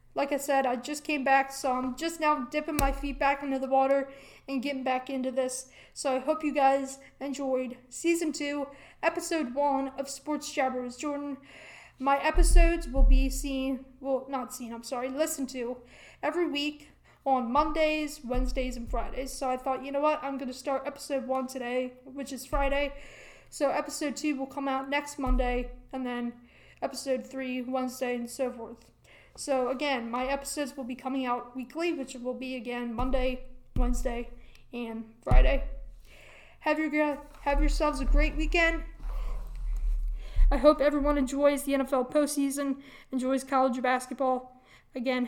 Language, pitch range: English, 255-285 Hz